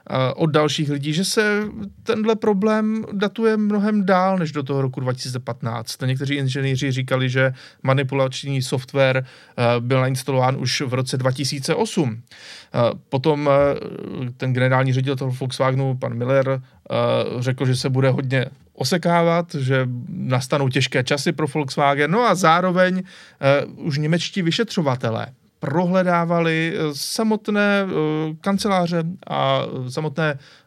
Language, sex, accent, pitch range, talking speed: Czech, male, native, 130-170 Hz, 115 wpm